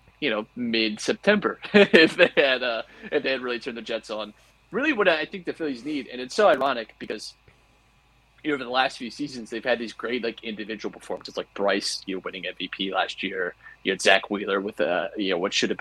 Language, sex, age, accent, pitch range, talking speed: English, male, 30-49, American, 110-155 Hz, 230 wpm